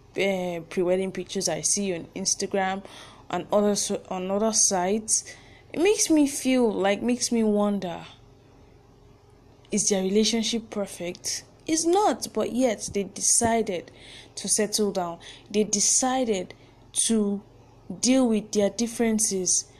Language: English